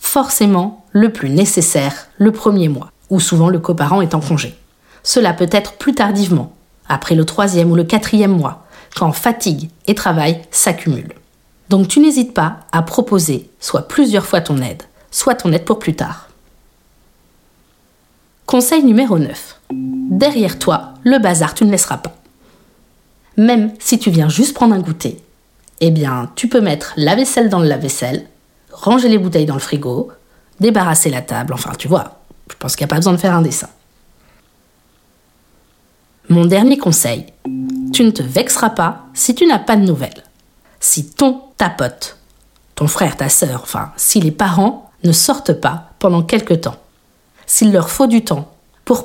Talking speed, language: 170 wpm, French